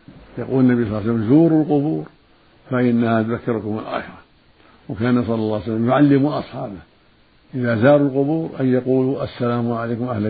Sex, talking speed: male, 150 wpm